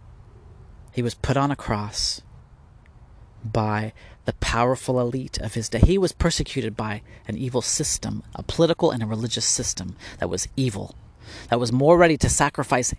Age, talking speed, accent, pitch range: 40-59, 160 wpm, American, 110-155 Hz